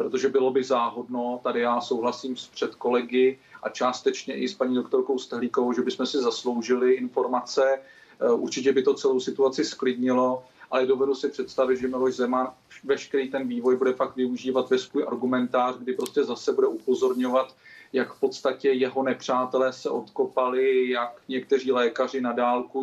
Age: 40-59